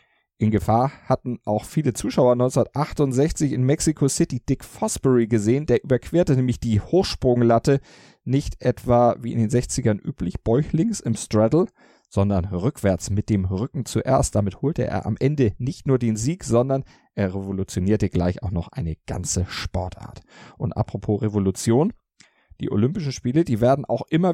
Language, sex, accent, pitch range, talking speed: German, male, German, 100-130 Hz, 155 wpm